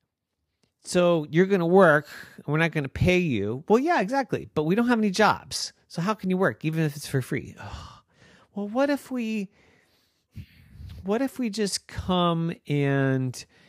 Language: English